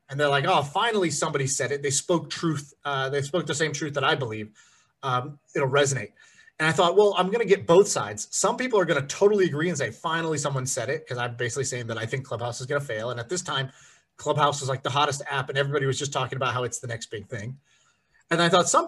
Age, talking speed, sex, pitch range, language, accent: 30-49, 260 wpm, male, 130-170 Hz, English, American